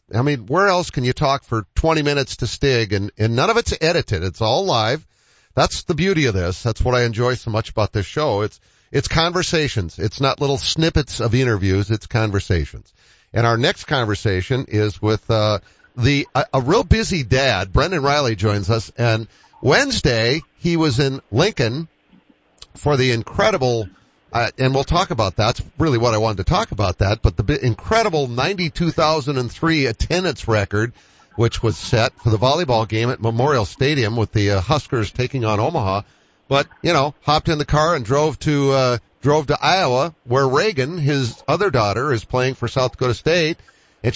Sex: male